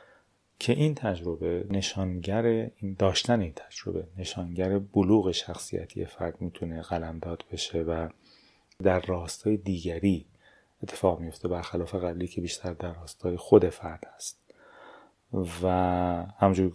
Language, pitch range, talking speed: Persian, 90-100 Hz, 120 wpm